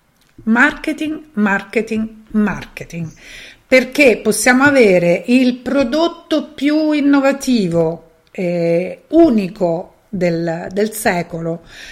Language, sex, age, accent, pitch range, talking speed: Italian, female, 50-69, native, 185-255 Hz, 75 wpm